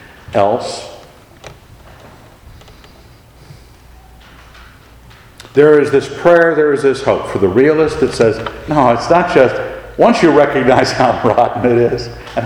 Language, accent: English, American